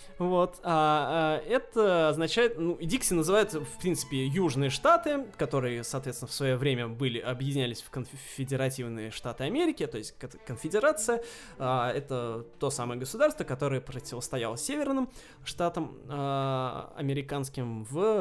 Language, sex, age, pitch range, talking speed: Russian, male, 20-39, 130-175 Hz, 125 wpm